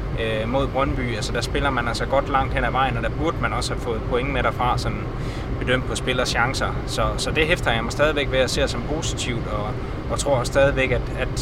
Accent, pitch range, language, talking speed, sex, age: native, 120-135 Hz, Danish, 235 wpm, male, 20-39